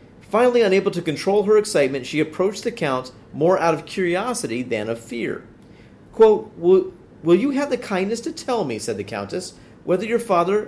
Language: English